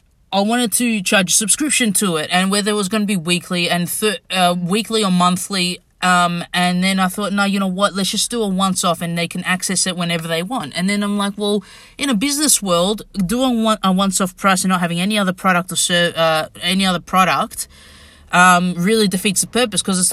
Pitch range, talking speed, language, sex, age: 175-205 Hz, 225 wpm, English, female, 20-39